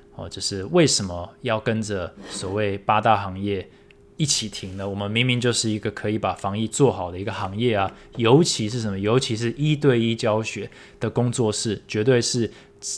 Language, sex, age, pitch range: Chinese, male, 20-39, 100-130 Hz